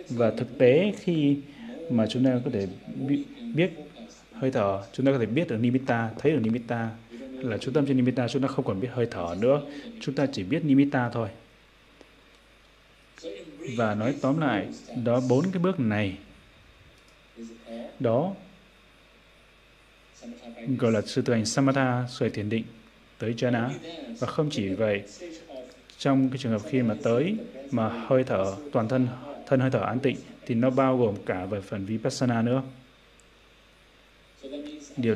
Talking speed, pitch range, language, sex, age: 160 wpm, 115-135 Hz, Vietnamese, male, 20-39